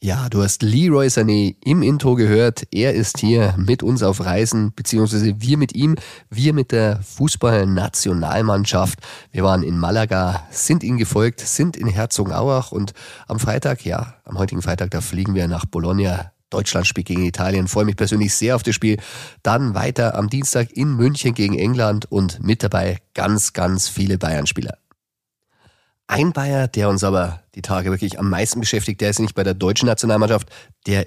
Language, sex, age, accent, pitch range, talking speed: German, male, 30-49, German, 95-115 Hz, 175 wpm